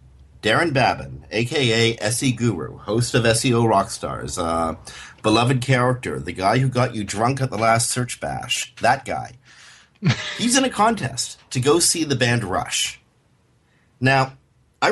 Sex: male